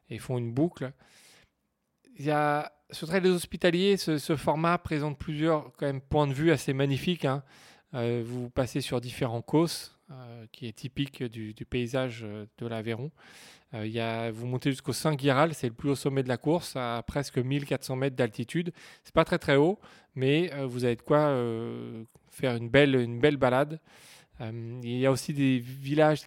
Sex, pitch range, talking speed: male, 120-150 Hz, 195 wpm